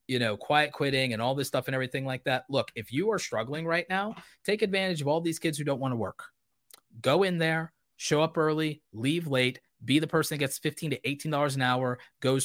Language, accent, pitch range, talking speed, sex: English, American, 115-155 Hz, 235 wpm, male